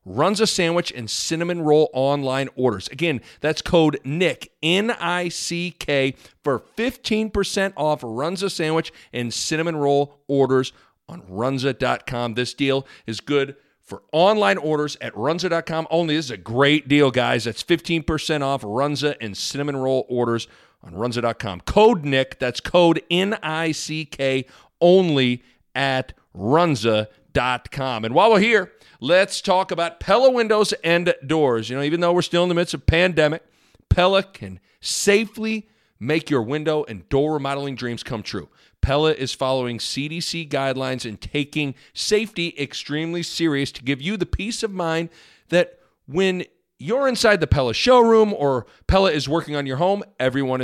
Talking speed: 145 wpm